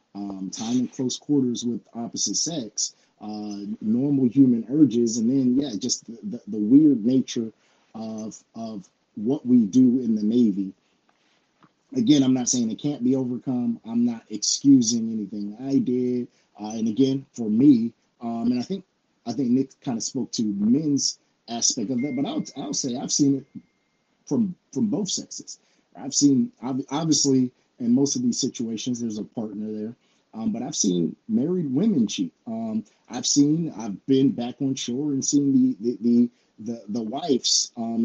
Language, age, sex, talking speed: English, 30-49, male, 170 wpm